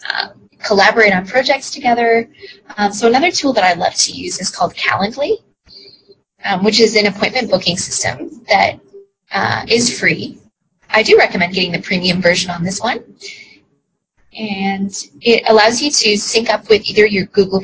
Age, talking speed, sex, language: 20-39, 165 wpm, female, English